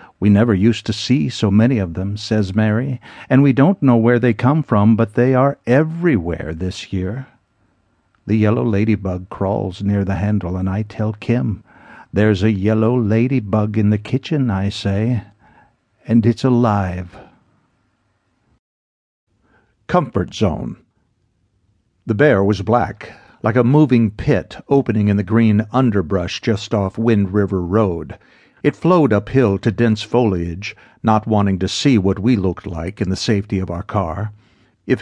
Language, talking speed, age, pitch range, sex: English, 155 wpm, 60-79, 100-120 Hz, male